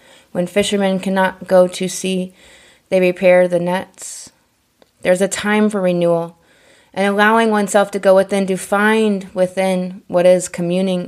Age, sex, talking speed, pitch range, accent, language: 20-39, female, 145 wpm, 180-210 Hz, American, English